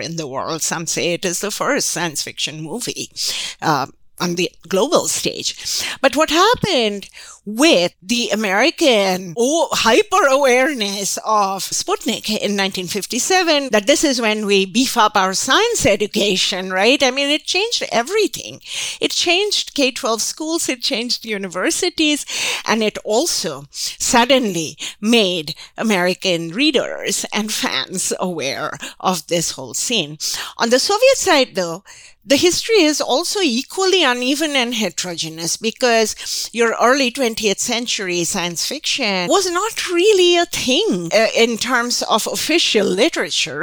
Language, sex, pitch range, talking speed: English, female, 190-285 Hz, 130 wpm